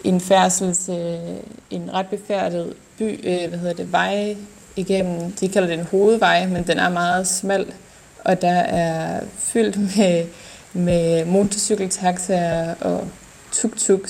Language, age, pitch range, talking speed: Danish, 20-39, 175-205 Hz, 130 wpm